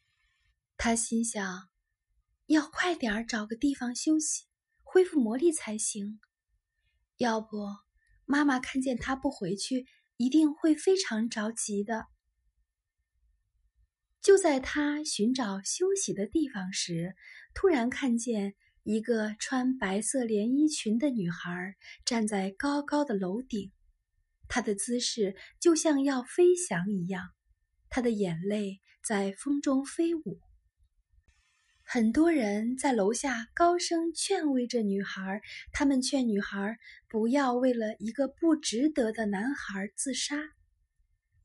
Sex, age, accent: female, 20-39, native